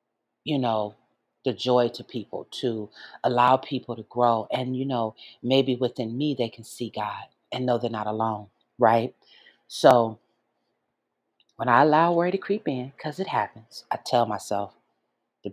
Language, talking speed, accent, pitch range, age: English, 160 wpm, American, 110-125 Hz, 40-59